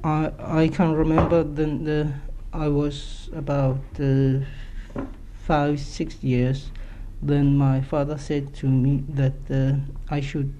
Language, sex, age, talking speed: English, male, 60-79, 135 wpm